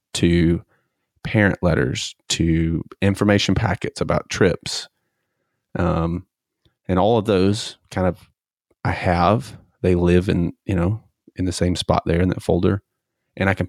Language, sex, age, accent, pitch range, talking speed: English, male, 30-49, American, 90-110 Hz, 145 wpm